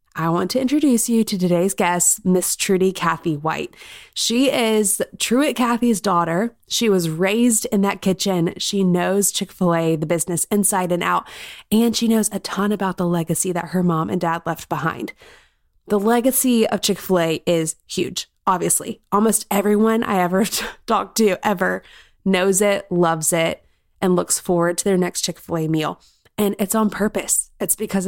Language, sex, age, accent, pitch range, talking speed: English, female, 20-39, American, 175-215 Hz, 180 wpm